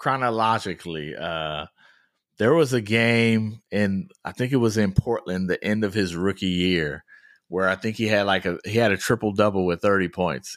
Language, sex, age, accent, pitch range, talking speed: English, male, 30-49, American, 100-125 Hz, 200 wpm